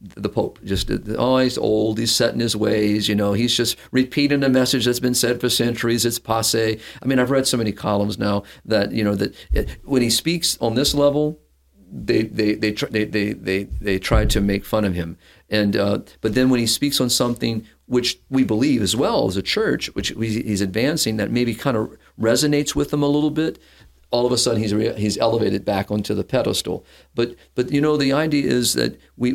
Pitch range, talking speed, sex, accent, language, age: 100-120 Hz, 220 wpm, male, American, English, 50-69